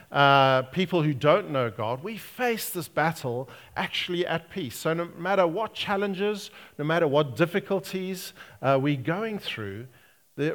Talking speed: 155 wpm